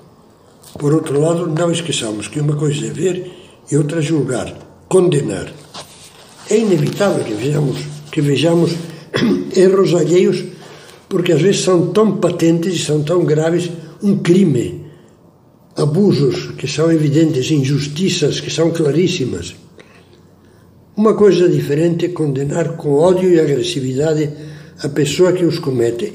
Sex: male